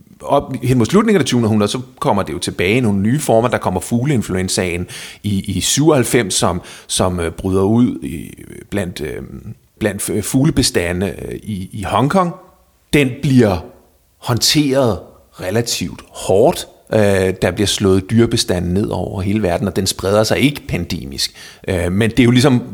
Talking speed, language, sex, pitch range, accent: 145 wpm, Danish, male, 95-125 Hz, native